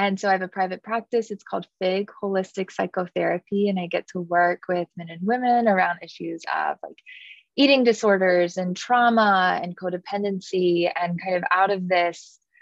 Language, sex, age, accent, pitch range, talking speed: English, female, 20-39, American, 175-210 Hz, 175 wpm